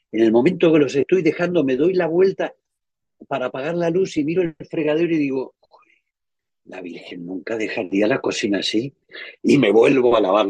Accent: Spanish